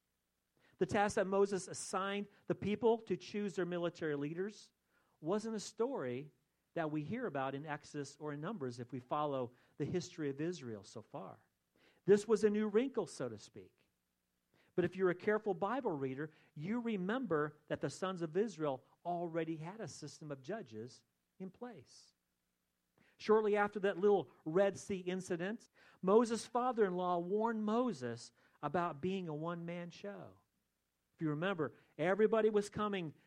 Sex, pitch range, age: male, 150-205 Hz, 40-59